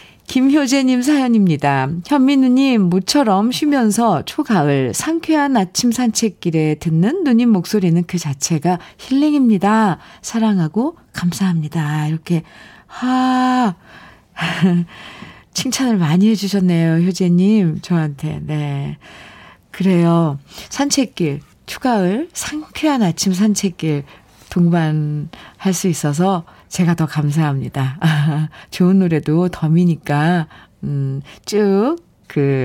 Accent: native